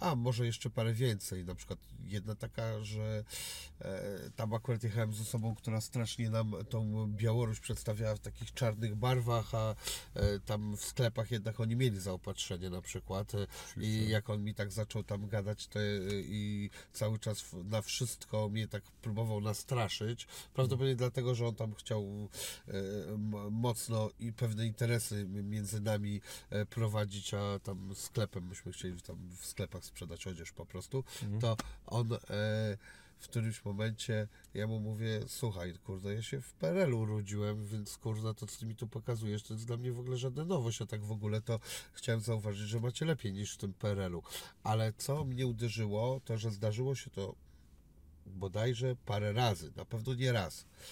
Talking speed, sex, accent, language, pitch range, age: 165 wpm, male, native, Polish, 105-120 Hz, 30-49